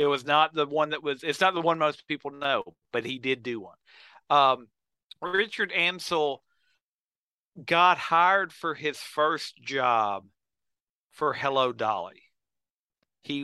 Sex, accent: male, American